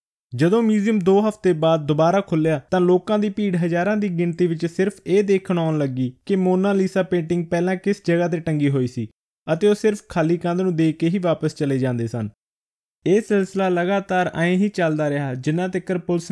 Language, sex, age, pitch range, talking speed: Punjabi, male, 20-39, 155-190 Hz, 200 wpm